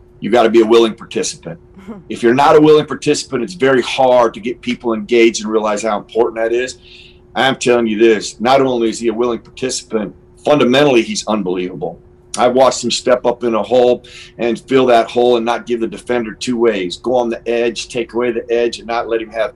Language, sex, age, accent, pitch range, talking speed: English, male, 40-59, American, 110-125 Hz, 220 wpm